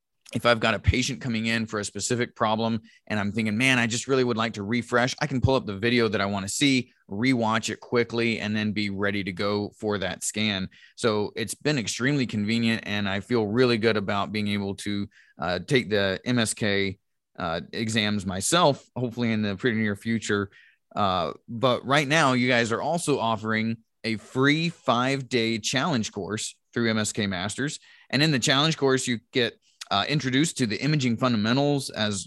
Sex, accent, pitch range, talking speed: male, American, 110-130 Hz, 190 wpm